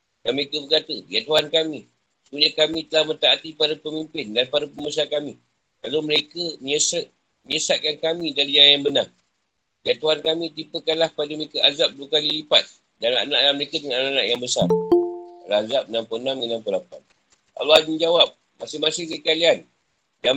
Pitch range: 145-165 Hz